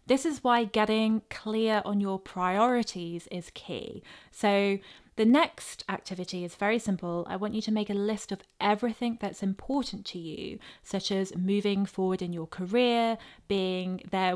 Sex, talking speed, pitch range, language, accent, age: female, 165 wpm, 190-235 Hz, English, British, 20-39